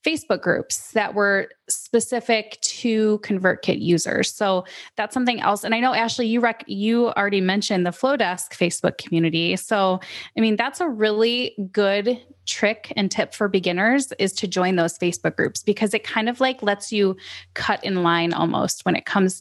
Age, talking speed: 20-39, 175 wpm